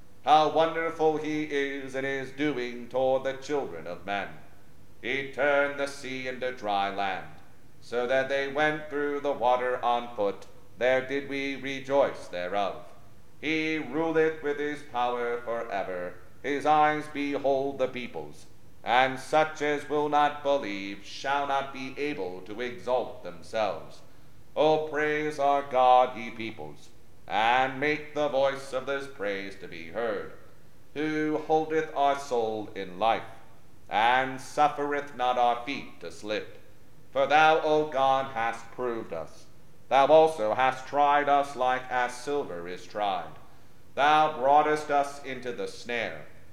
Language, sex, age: English, male, 40-59